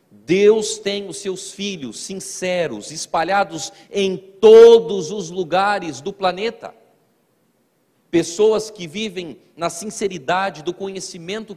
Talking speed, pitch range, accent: 105 wpm, 160-210 Hz, Brazilian